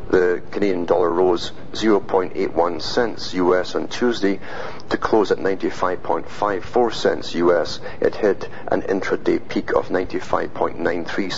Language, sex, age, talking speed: English, male, 50-69, 115 wpm